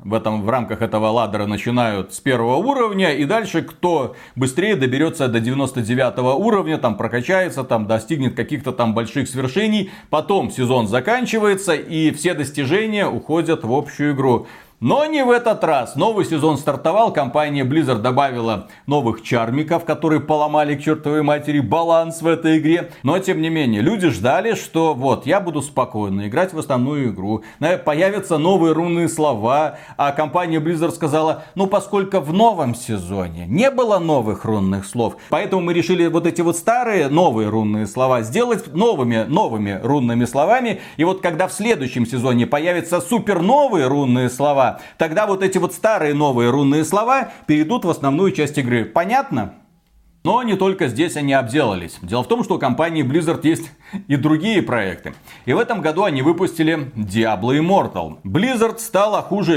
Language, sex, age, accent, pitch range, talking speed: Russian, male, 40-59, native, 125-180 Hz, 160 wpm